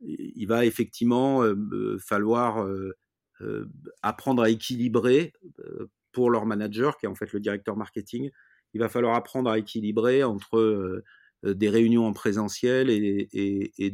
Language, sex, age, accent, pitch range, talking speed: French, male, 40-59, French, 105-125 Hz, 130 wpm